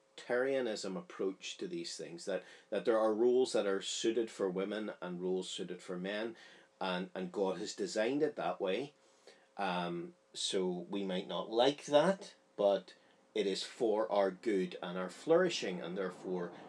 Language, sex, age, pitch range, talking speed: English, male, 40-59, 90-115 Hz, 165 wpm